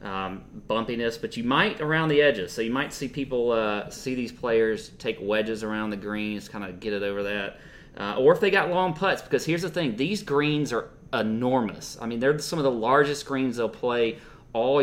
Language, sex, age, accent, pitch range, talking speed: English, male, 30-49, American, 100-135 Hz, 220 wpm